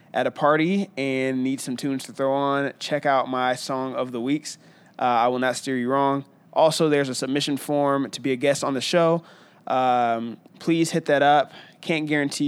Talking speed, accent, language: 205 wpm, American, English